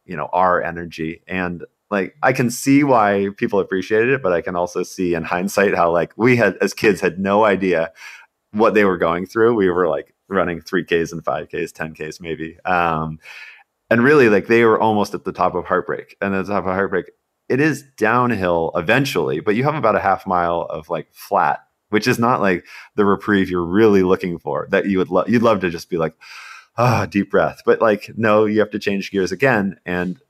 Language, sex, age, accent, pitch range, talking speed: English, male, 30-49, American, 85-105 Hz, 215 wpm